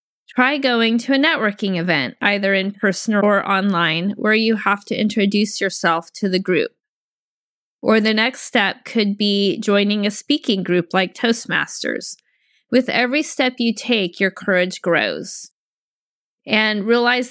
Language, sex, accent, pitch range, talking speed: English, female, American, 200-245 Hz, 145 wpm